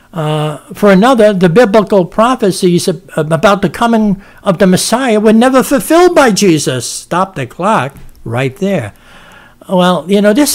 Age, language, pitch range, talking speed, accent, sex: 60-79, English, 170-220 Hz, 150 wpm, American, male